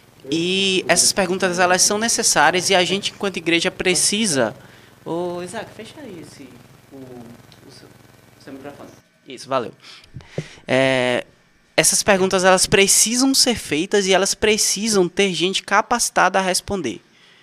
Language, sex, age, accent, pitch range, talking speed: Portuguese, male, 20-39, Brazilian, 135-180 Hz, 130 wpm